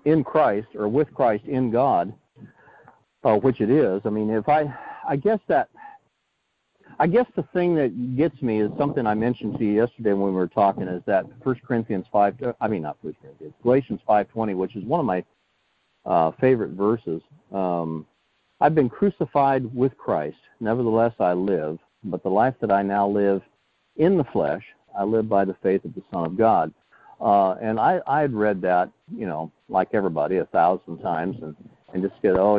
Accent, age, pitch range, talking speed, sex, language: American, 50-69, 100-130 Hz, 190 wpm, male, English